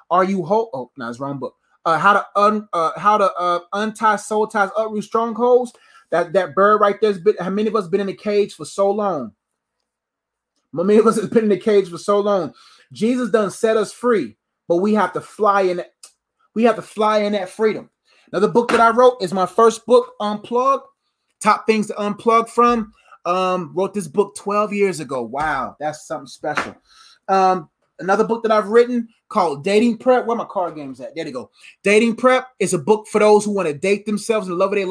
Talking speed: 225 wpm